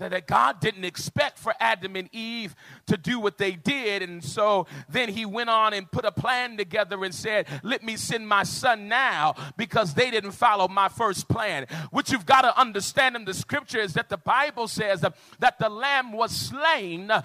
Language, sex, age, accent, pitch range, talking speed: English, male, 40-59, American, 185-305 Hz, 200 wpm